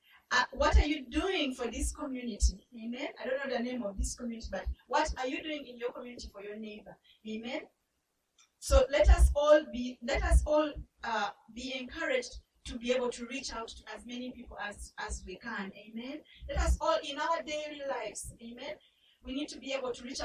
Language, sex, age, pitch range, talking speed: English, female, 30-49, 230-275 Hz, 205 wpm